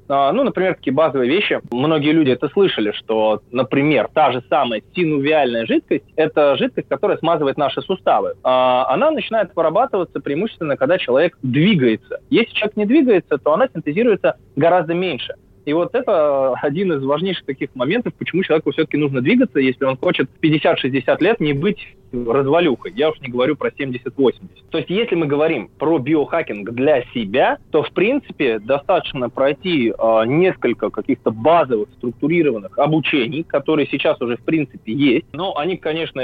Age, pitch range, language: 20-39, 135-180 Hz, Russian